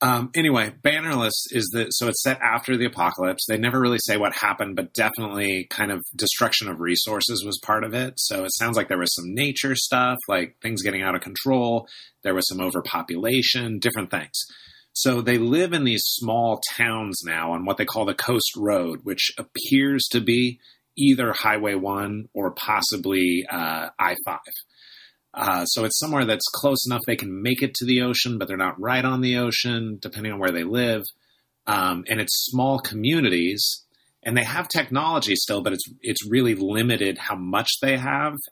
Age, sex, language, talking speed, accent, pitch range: 30-49, male, English, 185 wpm, American, 100-125 Hz